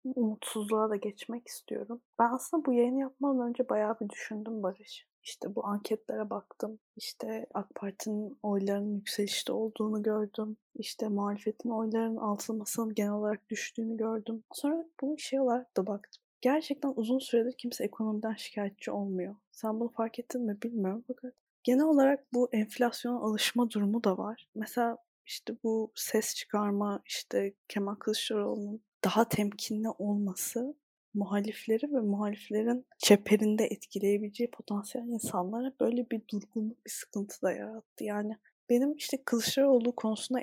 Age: 20-39